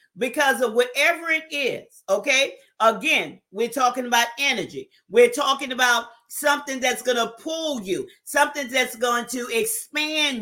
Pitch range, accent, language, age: 230-300 Hz, American, English, 40-59